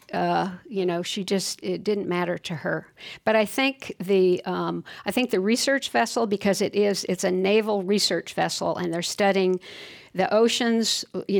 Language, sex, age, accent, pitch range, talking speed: English, female, 50-69, American, 180-220 Hz, 180 wpm